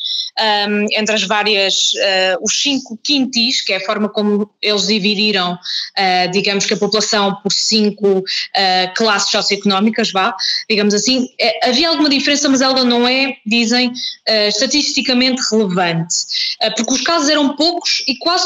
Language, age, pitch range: Portuguese, 20-39, 210-275 Hz